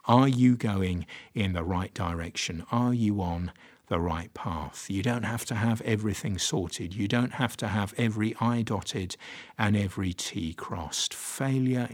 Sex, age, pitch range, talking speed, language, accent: male, 50-69, 90-115 Hz, 165 wpm, English, British